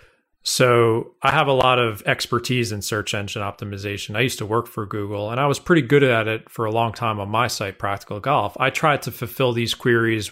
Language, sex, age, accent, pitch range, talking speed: English, male, 30-49, American, 105-130 Hz, 225 wpm